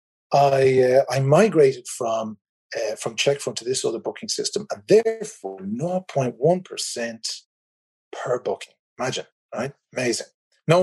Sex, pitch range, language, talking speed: male, 130-205 Hz, English, 115 wpm